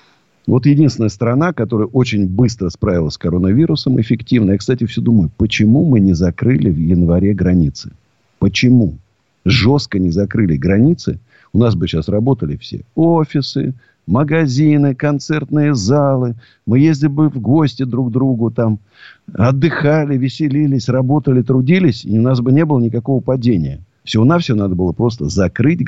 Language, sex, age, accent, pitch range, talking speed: Russian, male, 50-69, native, 100-140 Hz, 150 wpm